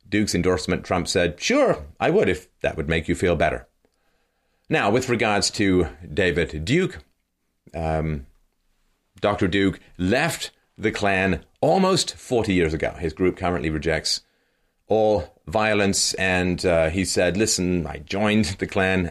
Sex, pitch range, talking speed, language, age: male, 80-100 Hz, 140 wpm, English, 30-49